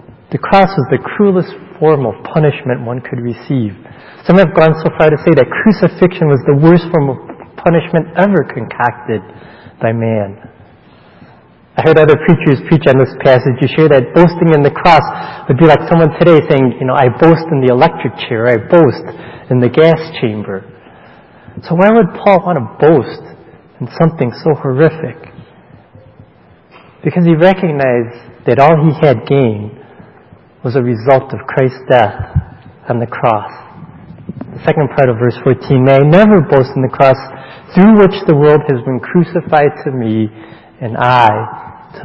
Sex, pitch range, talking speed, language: male, 125-165 Hz, 170 wpm, English